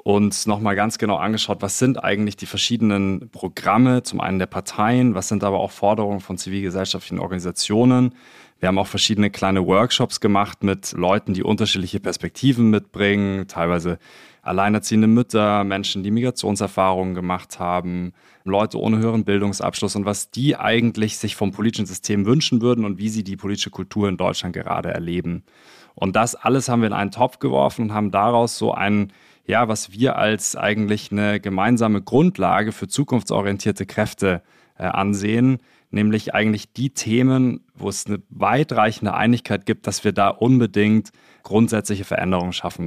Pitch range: 100-115 Hz